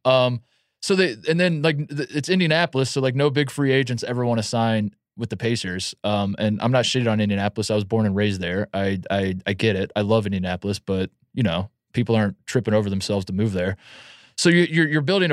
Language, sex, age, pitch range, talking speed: English, male, 20-39, 100-130 Hz, 225 wpm